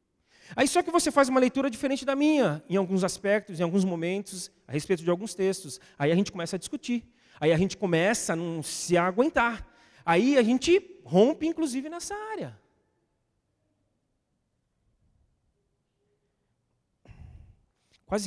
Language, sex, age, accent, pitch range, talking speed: Portuguese, male, 40-59, Brazilian, 140-210 Hz, 140 wpm